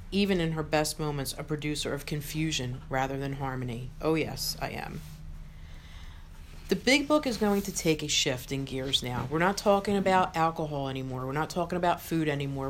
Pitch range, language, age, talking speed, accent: 135-195 Hz, English, 40-59, 190 wpm, American